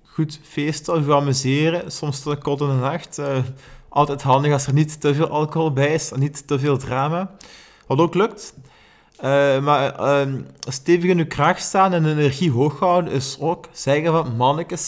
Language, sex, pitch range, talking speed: Dutch, male, 135-170 Hz, 180 wpm